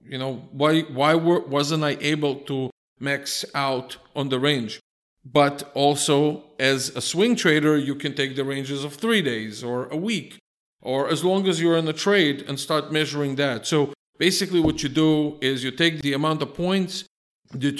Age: 50-69